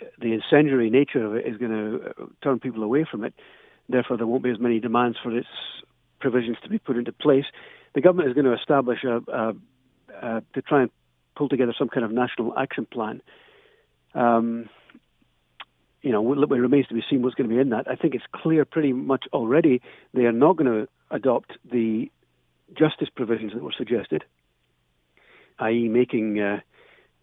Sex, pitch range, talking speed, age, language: male, 110-135 Hz, 185 wpm, 50-69, English